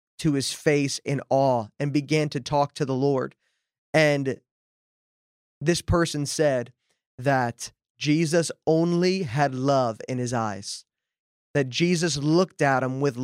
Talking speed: 135 wpm